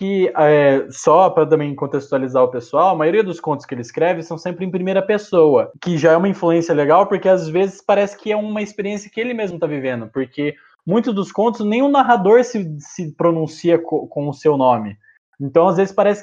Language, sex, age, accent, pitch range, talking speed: Portuguese, male, 20-39, Brazilian, 130-200 Hz, 220 wpm